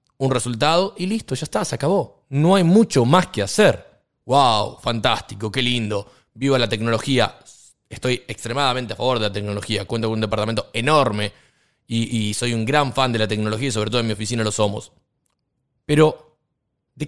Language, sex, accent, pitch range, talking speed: Spanish, male, Argentinian, 120-185 Hz, 185 wpm